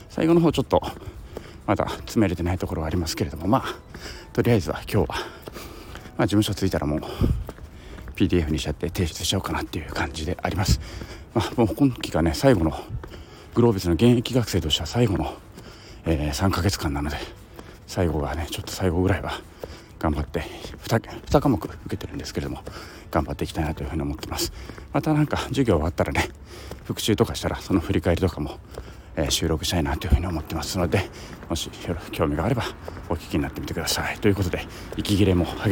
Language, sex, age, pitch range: Japanese, male, 40-59, 80-105 Hz